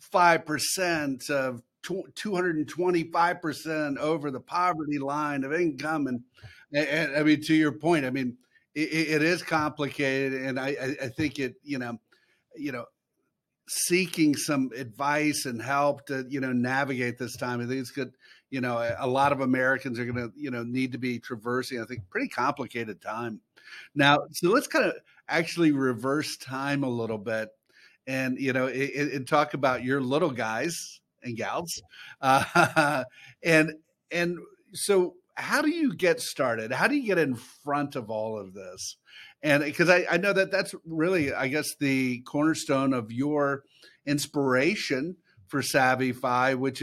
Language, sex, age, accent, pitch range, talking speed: English, male, 50-69, American, 130-160 Hz, 160 wpm